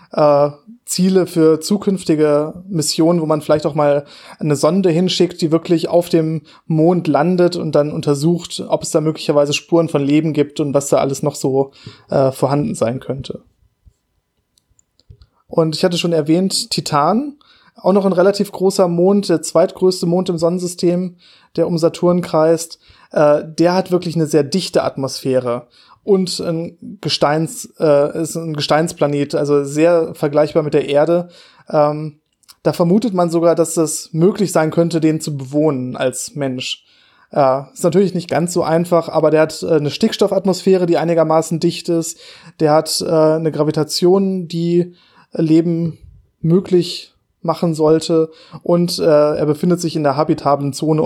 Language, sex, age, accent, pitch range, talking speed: German, male, 20-39, German, 150-175 Hz, 155 wpm